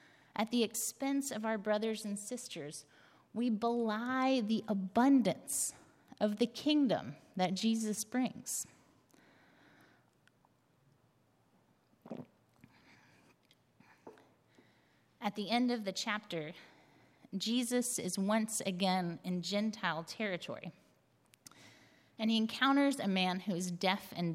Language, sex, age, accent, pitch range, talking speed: English, female, 30-49, American, 190-235 Hz, 100 wpm